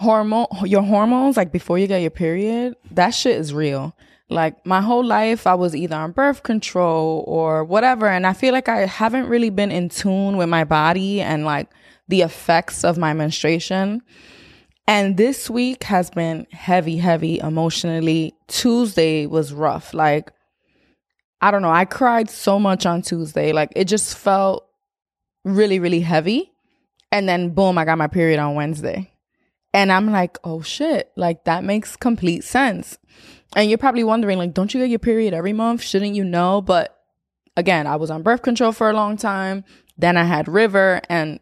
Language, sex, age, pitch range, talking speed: English, female, 20-39, 165-210 Hz, 180 wpm